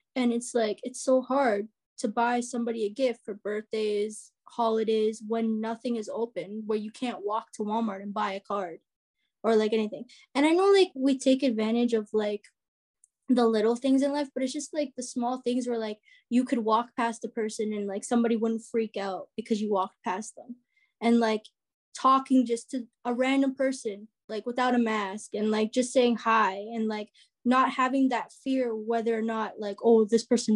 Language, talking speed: English, 200 wpm